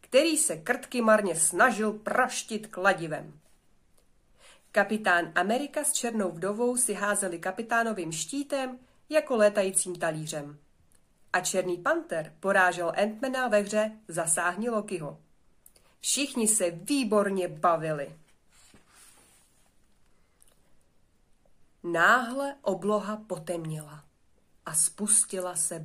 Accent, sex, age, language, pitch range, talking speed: native, female, 30-49, Czech, 180-245 Hz, 90 wpm